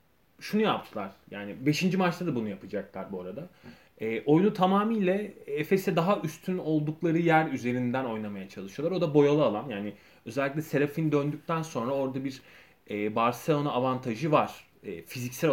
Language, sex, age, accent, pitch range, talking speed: Turkish, male, 30-49, native, 110-155 Hz, 145 wpm